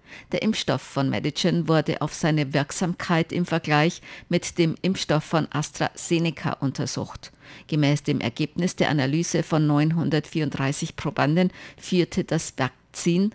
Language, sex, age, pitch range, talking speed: German, female, 50-69, 145-170 Hz, 120 wpm